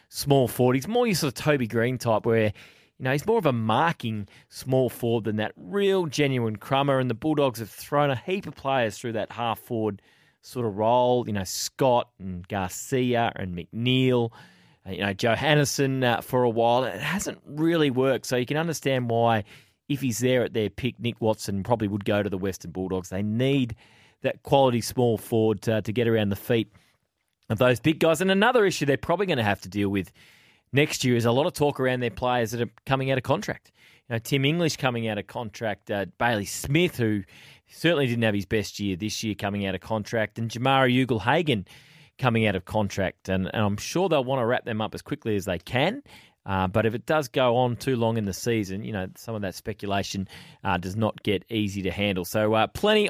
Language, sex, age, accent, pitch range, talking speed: English, male, 30-49, Australian, 105-135 Hz, 225 wpm